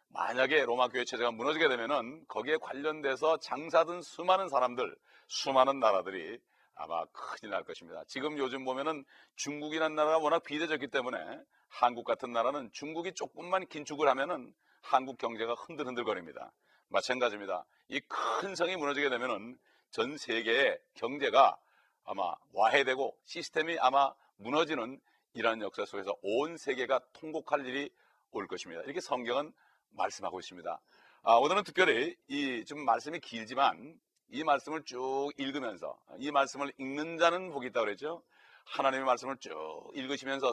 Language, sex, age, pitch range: Korean, male, 40-59, 130-165 Hz